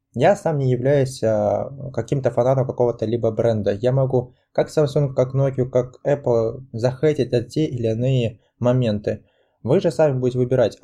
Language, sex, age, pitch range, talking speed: Russian, male, 20-39, 120-145 Hz, 155 wpm